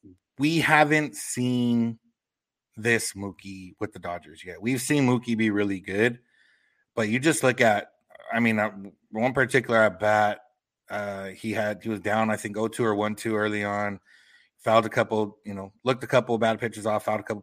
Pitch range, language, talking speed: 105-115 Hz, English, 185 wpm